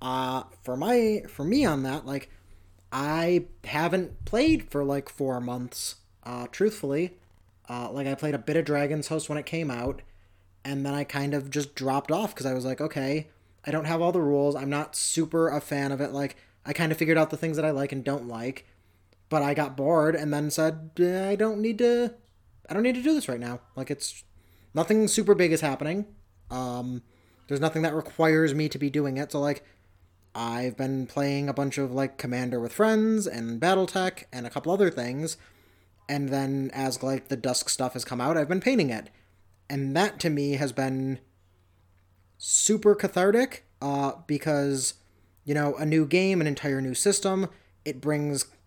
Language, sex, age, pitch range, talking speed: English, male, 20-39, 125-160 Hz, 195 wpm